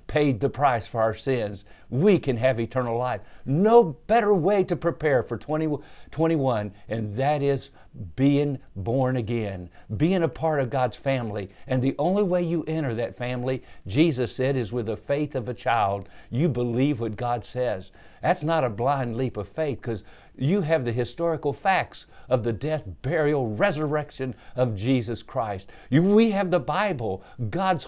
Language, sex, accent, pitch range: English, male, American, 120-160 Hz